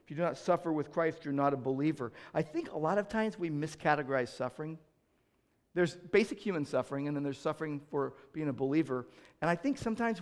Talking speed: 210 wpm